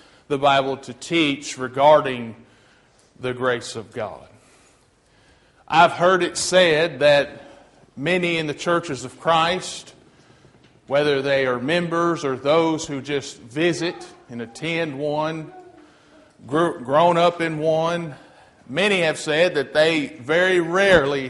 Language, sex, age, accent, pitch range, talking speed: English, male, 40-59, American, 130-175 Hz, 120 wpm